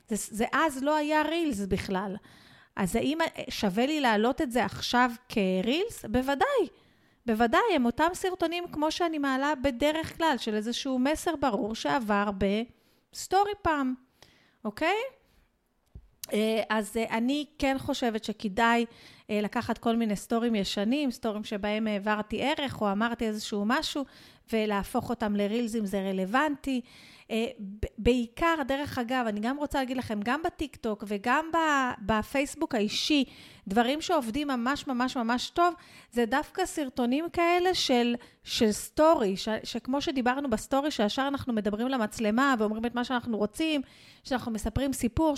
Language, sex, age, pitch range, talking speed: Hebrew, female, 30-49, 220-290 Hz, 130 wpm